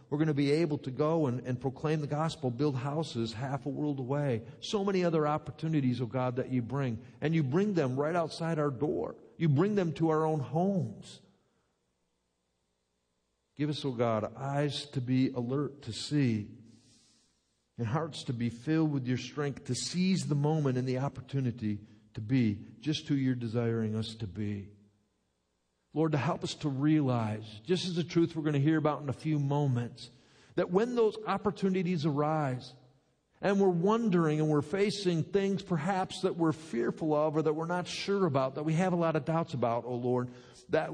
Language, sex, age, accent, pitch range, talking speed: English, male, 50-69, American, 115-160 Hz, 190 wpm